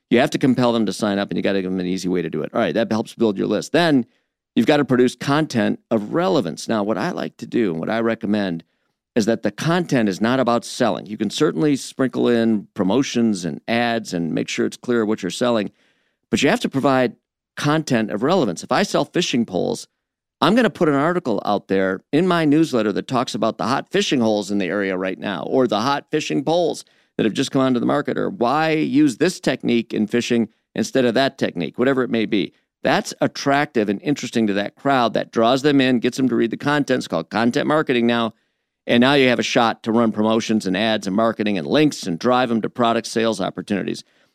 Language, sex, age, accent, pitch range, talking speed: English, male, 50-69, American, 105-140 Hz, 235 wpm